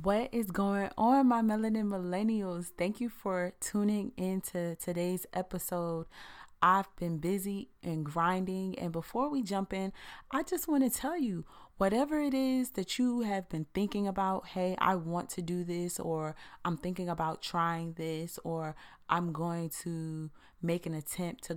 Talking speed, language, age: 165 wpm, English, 30-49